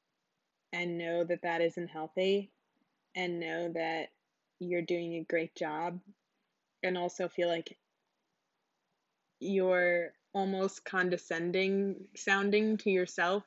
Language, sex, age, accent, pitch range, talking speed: English, female, 20-39, American, 170-210 Hz, 105 wpm